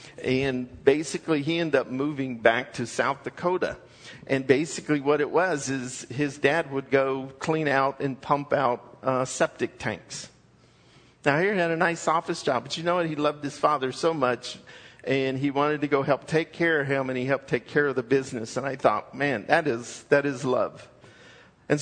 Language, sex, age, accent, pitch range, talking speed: English, male, 50-69, American, 135-165 Hz, 200 wpm